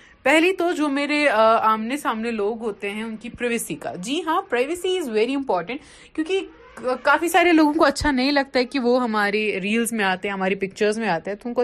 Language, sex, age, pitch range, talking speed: Urdu, female, 30-49, 210-275 Hz, 215 wpm